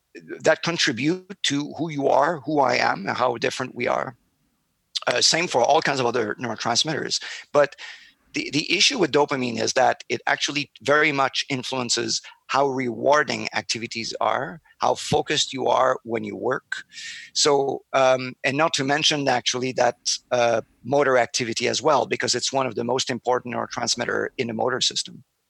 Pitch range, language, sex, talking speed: 125-160 Hz, English, male, 165 wpm